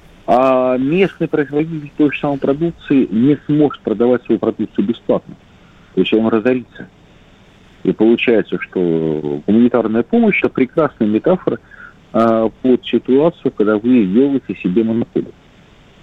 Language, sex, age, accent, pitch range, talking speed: Russian, male, 40-59, native, 100-140 Hz, 120 wpm